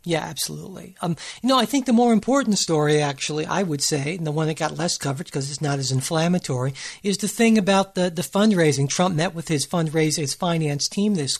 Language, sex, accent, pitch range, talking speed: English, male, American, 160-215 Hz, 225 wpm